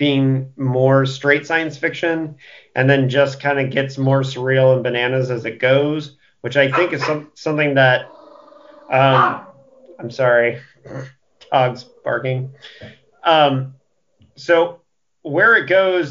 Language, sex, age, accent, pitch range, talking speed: English, male, 40-59, American, 135-160 Hz, 125 wpm